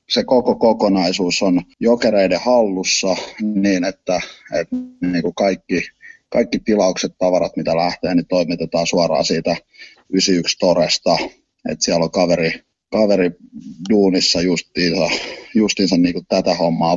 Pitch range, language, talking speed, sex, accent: 85-105 Hz, Finnish, 110 wpm, male, native